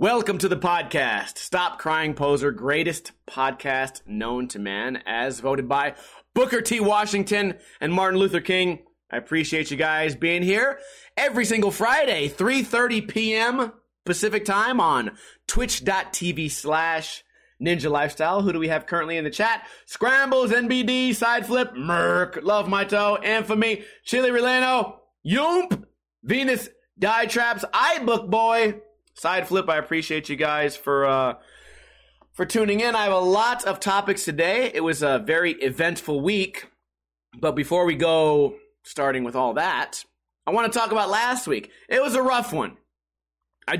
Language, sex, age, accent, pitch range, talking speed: English, male, 30-49, American, 150-225 Hz, 150 wpm